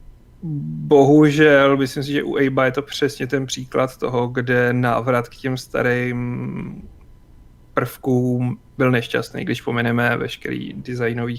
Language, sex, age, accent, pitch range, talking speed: Czech, male, 30-49, native, 120-140 Hz, 125 wpm